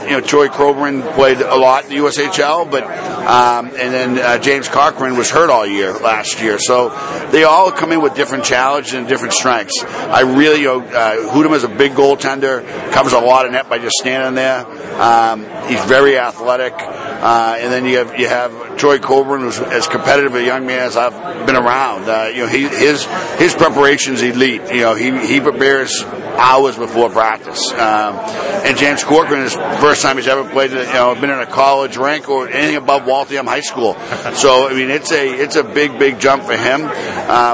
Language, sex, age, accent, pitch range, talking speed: English, male, 50-69, American, 125-145 Hz, 205 wpm